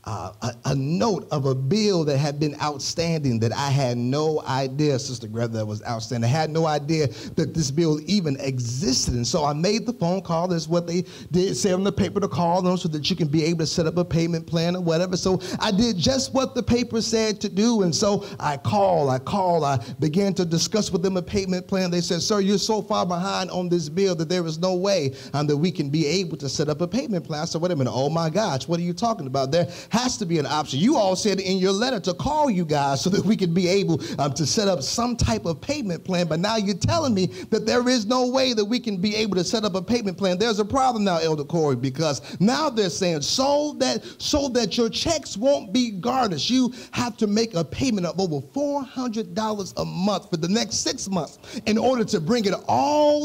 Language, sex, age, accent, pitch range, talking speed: English, male, 40-59, American, 155-220 Hz, 245 wpm